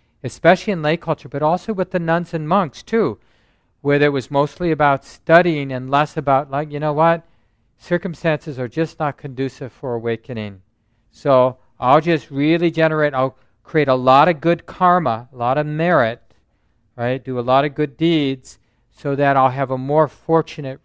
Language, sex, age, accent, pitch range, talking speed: English, male, 50-69, American, 120-150 Hz, 180 wpm